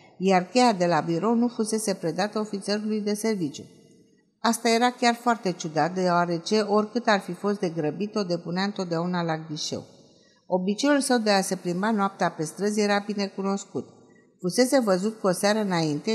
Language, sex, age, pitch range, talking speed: Romanian, female, 50-69, 175-220 Hz, 165 wpm